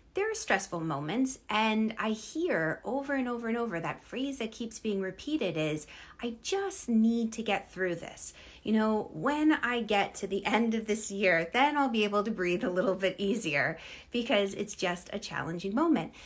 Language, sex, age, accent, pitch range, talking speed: English, female, 30-49, American, 180-250 Hz, 195 wpm